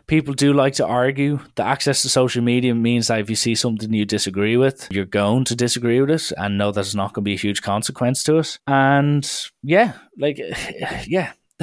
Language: English